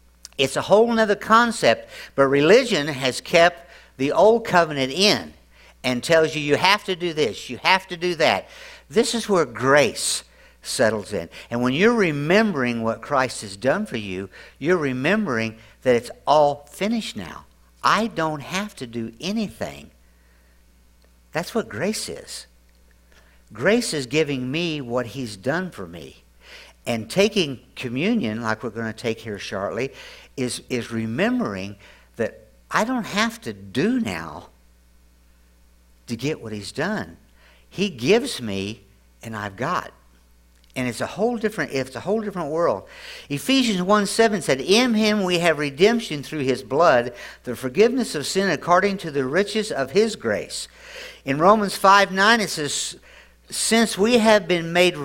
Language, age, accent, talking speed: English, 60-79, American, 155 wpm